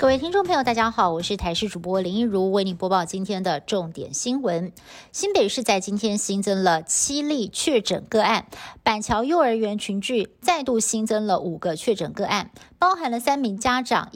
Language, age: Chinese, 50-69